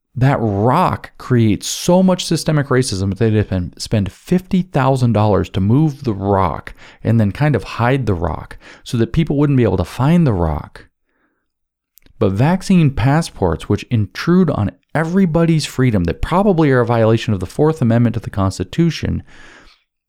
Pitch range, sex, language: 105-150 Hz, male, English